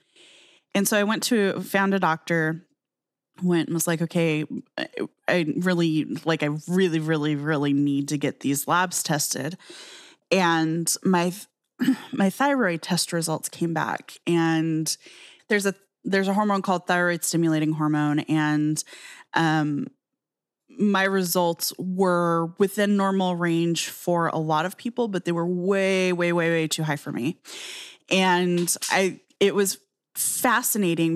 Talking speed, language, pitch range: 140 wpm, English, 165-195 Hz